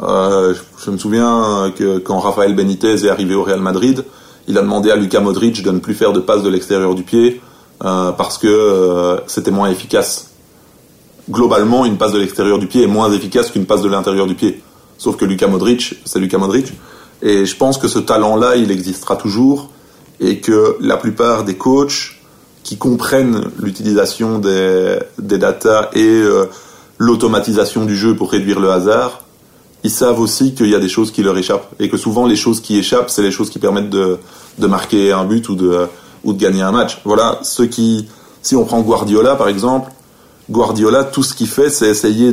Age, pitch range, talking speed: 30-49, 100-120 Hz, 200 wpm